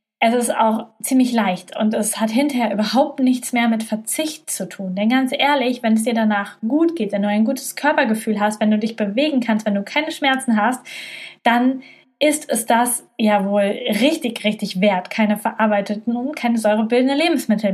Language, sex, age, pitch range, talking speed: German, female, 20-39, 215-245 Hz, 190 wpm